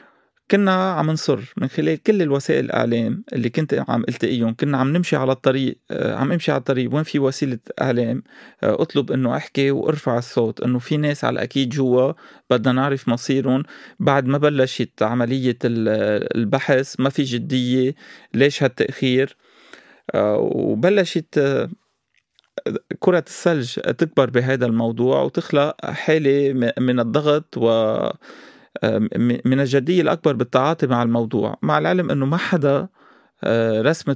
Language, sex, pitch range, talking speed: Arabic, male, 125-155 Hz, 125 wpm